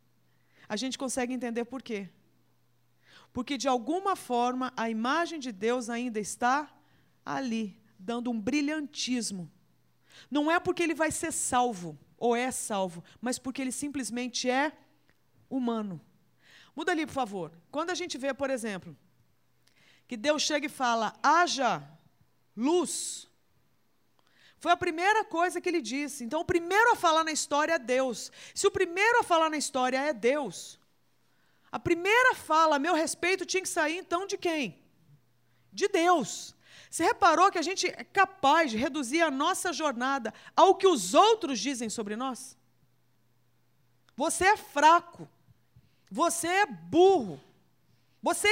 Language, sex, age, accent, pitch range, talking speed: Portuguese, female, 40-59, Brazilian, 230-345 Hz, 145 wpm